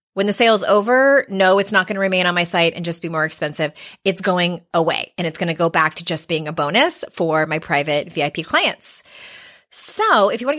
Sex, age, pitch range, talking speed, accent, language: female, 20-39, 160-215 Hz, 240 wpm, American, English